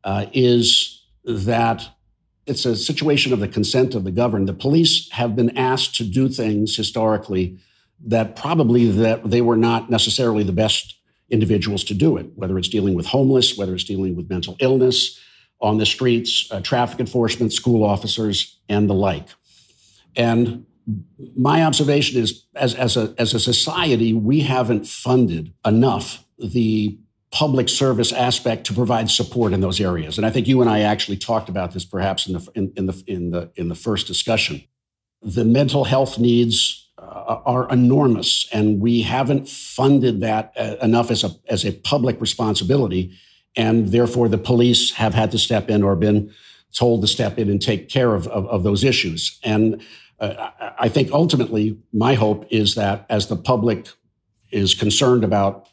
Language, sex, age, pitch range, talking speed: English, male, 50-69, 105-125 Hz, 170 wpm